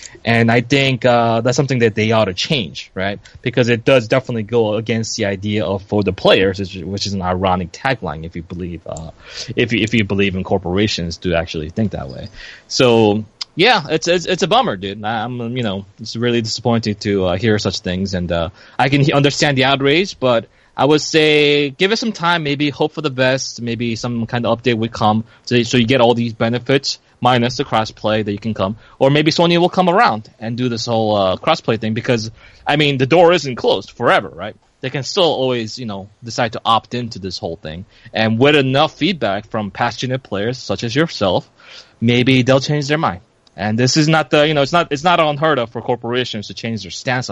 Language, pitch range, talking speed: English, 105-130 Hz, 225 wpm